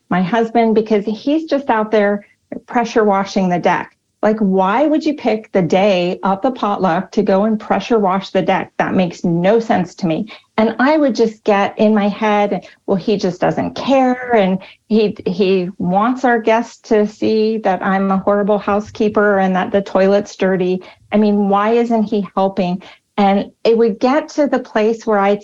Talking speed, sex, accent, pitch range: 190 wpm, female, American, 185-230 Hz